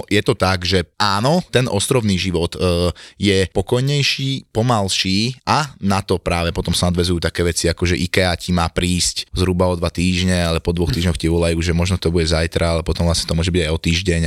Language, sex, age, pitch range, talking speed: Slovak, male, 20-39, 85-105 Hz, 215 wpm